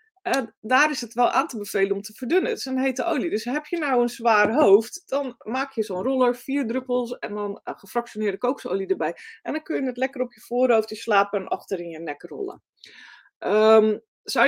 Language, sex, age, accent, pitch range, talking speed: Dutch, female, 20-39, Dutch, 200-255 Hz, 210 wpm